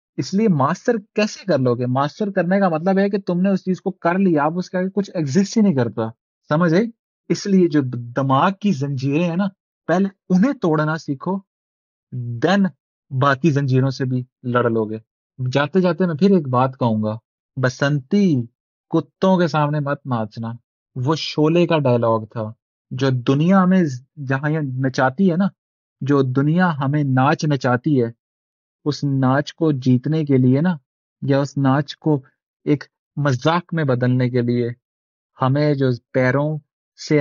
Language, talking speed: Urdu, 165 wpm